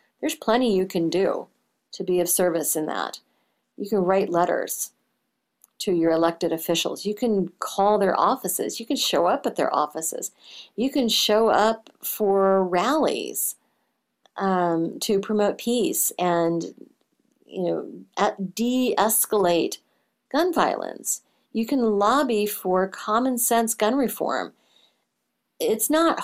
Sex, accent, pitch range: female, American, 175-220 Hz